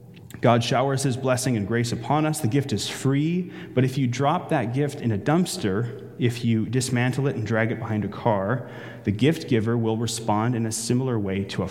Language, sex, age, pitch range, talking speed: English, male, 30-49, 110-135 Hz, 215 wpm